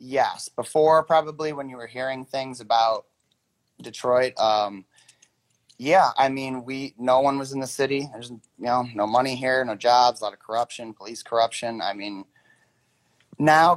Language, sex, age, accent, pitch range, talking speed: English, male, 30-49, American, 110-135 Hz, 165 wpm